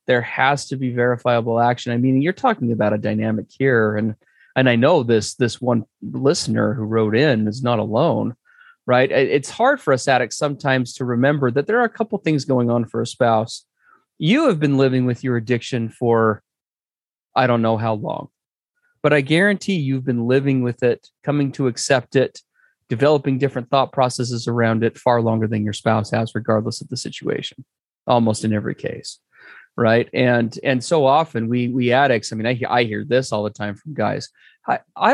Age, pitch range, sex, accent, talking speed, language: 30-49, 115-150 Hz, male, American, 200 wpm, English